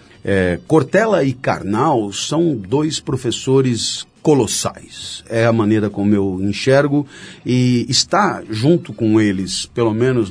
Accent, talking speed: Brazilian, 115 wpm